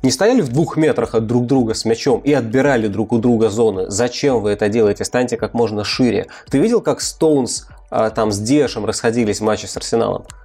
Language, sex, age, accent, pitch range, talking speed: Russian, male, 20-39, native, 110-150 Hz, 205 wpm